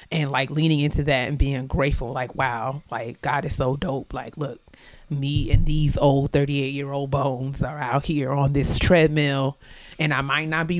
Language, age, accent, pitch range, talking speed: English, 30-49, American, 135-155 Hz, 200 wpm